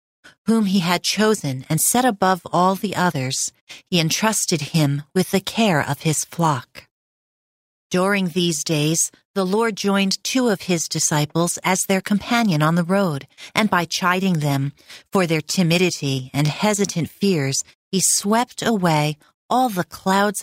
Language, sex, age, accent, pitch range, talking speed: English, female, 40-59, American, 150-200 Hz, 150 wpm